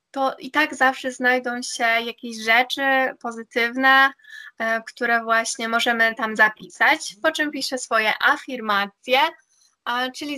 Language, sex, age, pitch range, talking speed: Polish, female, 10-29, 225-270 Hz, 115 wpm